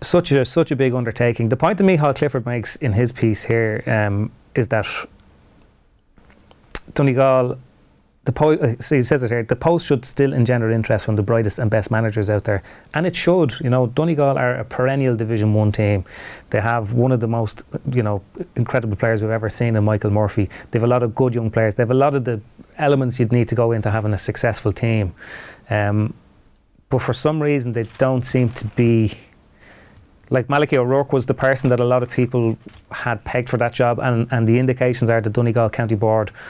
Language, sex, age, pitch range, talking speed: English, male, 30-49, 110-130 Hz, 210 wpm